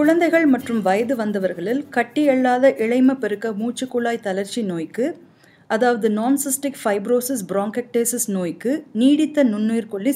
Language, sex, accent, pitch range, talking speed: Tamil, female, native, 205-280 Hz, 100 wpm